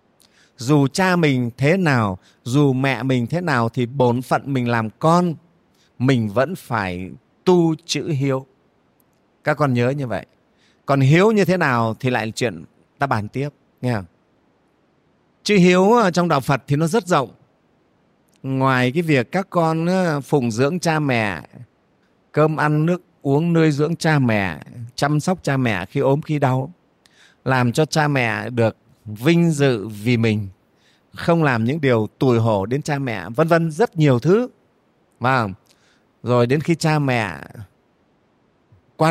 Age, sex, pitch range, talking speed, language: 30-49, male, 115-165 Hz, 155 wpm, Vietnamese